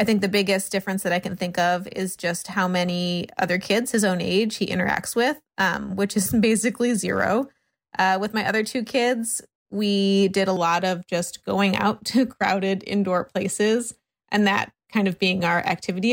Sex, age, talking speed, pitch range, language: female, 20-39, 195 wpm, 185-215 Hz, English